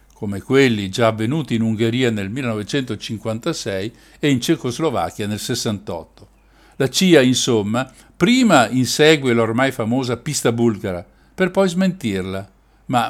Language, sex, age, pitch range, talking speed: Italian, male, 60-79, 110-155 Hz, 120 wpm